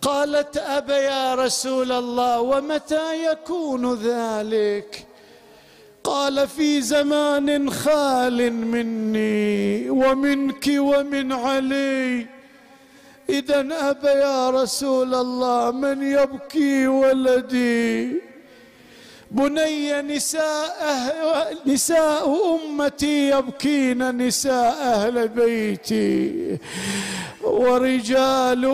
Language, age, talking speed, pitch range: Arabic, 50-69, 70 wpm, 240-285 Hz